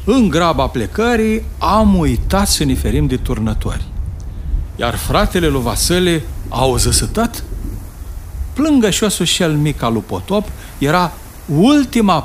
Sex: male